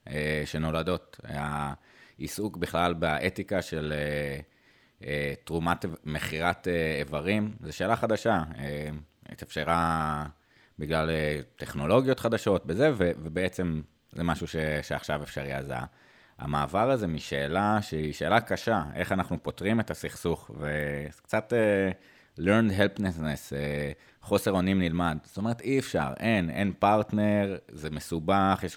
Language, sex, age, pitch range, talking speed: Hebrew, male, 30-49, 75-100 Hz, 105 wpm